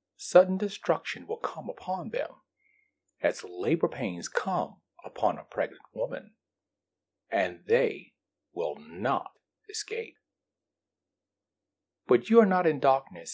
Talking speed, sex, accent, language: 110 wpm, male, American, English